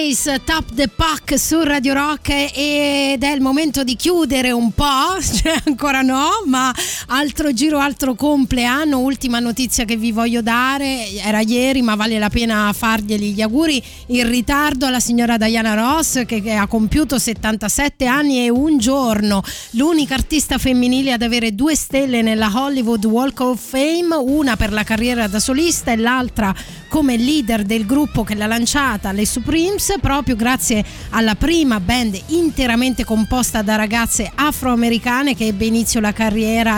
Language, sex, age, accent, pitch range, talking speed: Italian, female, 20-39, native, 225-285 Hz, 155 wpm